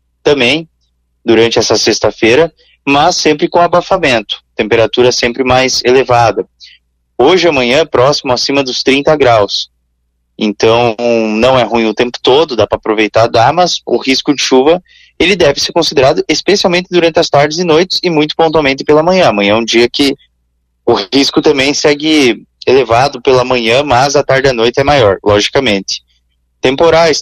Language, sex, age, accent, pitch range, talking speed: Portuguese, male, 20-39, Brazilian, 110-155 Hz, 160 wpm